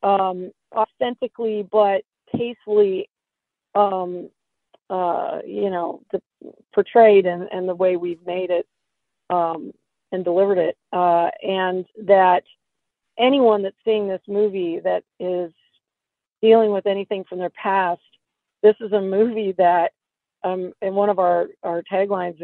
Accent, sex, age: American, female, 40-59